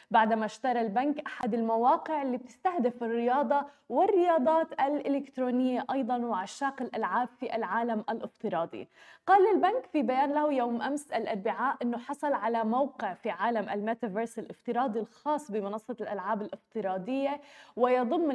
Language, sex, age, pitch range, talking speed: Arabic, female, 20-39, 230-280 Hz, 120 wpm